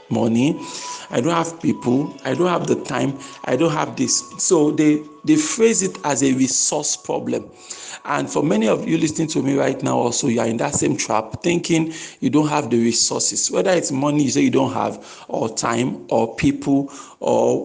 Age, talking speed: 50-69, 200 wpm